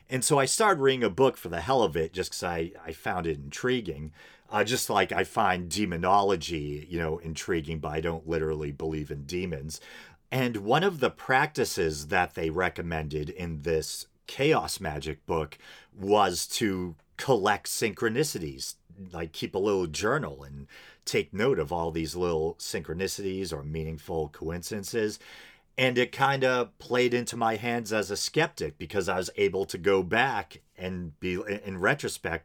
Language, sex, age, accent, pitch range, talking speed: English, male, 40-59, American, 80-110 Hz, 165 wpm